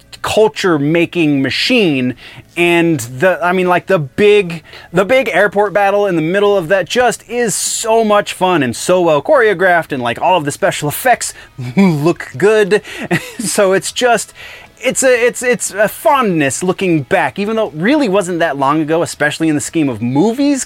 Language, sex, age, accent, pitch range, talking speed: English, male, 20-39, American, 140-215 Hz, 175 wpm